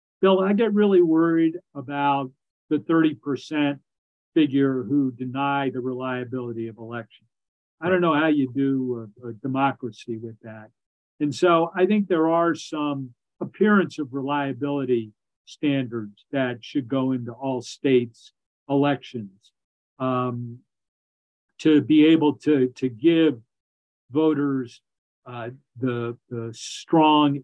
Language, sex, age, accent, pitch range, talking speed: English, male, 50-69, American, 120-150 Hz, 120 wpm